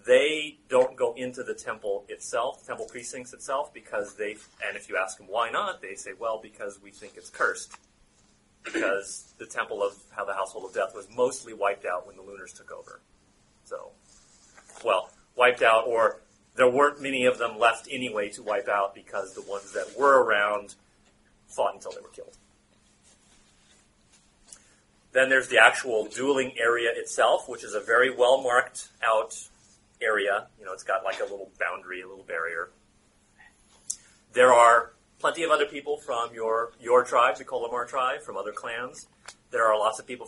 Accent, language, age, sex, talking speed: American, English, 30-49, male, 175 wpm